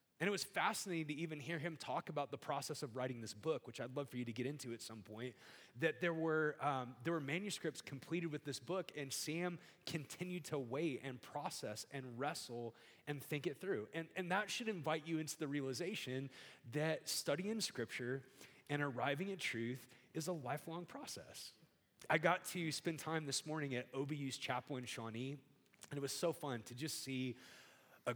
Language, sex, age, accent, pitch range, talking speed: English, male, 30-49, American, 125-160 Hz, 195 wpm